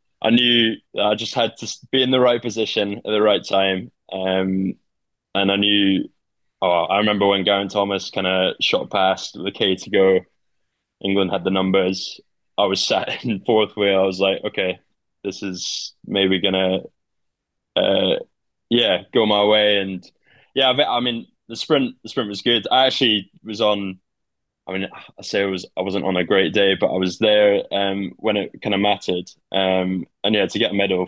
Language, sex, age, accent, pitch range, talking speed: English, male, 20-39, British, 95-105 Hz, 190 wpm